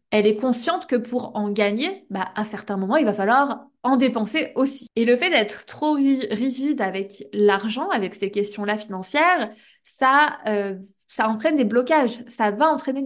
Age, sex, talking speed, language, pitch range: 20-39, female, 175 wpm, French, 205-245 Hz